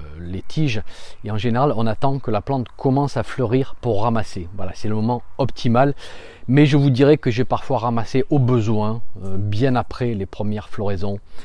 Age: 40-59